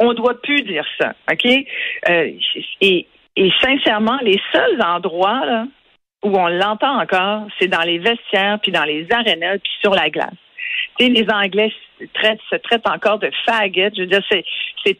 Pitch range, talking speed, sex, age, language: 190-245 Hz, 170 wpm, female, 50-69, French